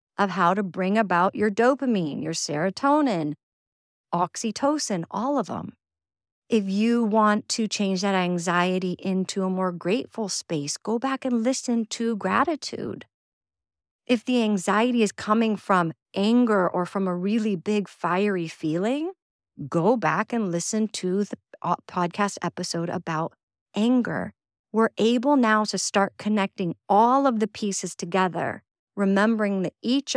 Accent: American